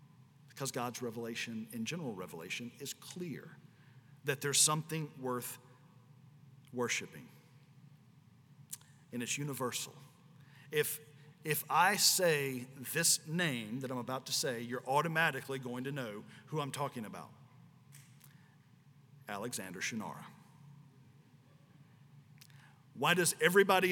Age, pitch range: 50-69, 135-165 Hz